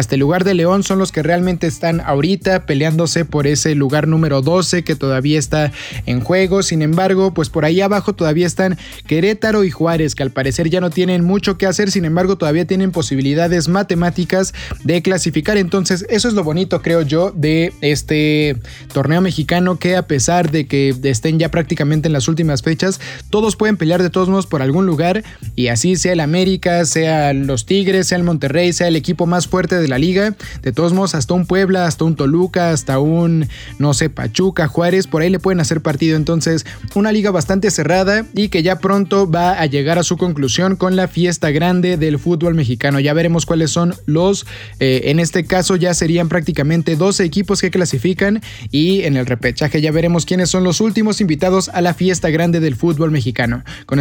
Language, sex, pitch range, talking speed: Spanish, male, 155-185 Hz, 200 wpm